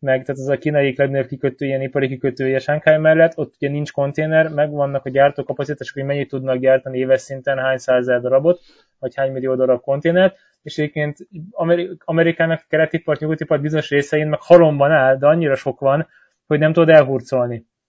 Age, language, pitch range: 20-39, Hungarian, 135-160 Hz